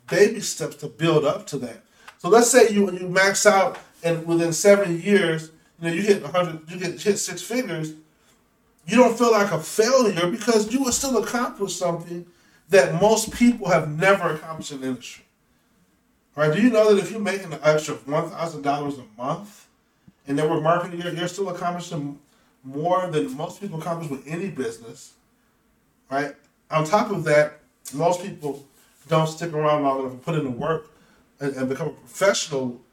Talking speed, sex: 185 wpm, male